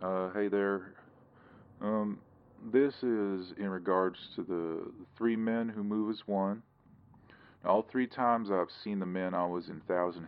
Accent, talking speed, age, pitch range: American, 160 wpm, 40-59, 90-105 Hz